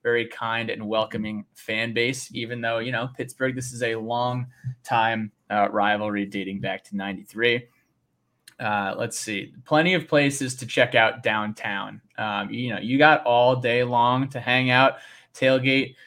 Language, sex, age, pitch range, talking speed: English, male, 20-39, 115-135 Hz, 165 wpm